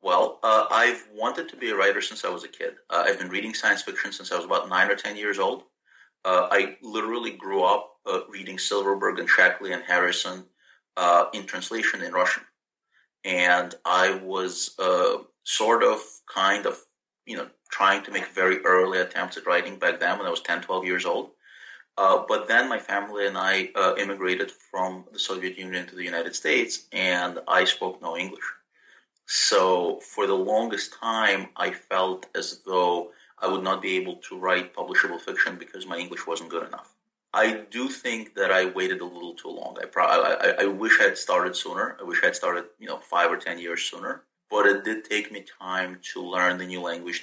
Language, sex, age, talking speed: English, male, 30-49, 205 wpm